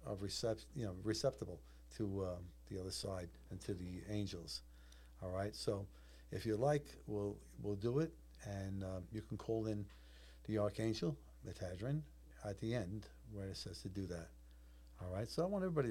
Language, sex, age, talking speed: English, male, 50-69, 185 wpm